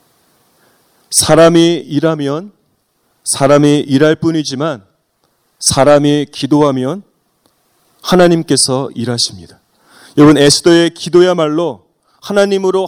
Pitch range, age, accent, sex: 140-170 Hz, 30-49, native, male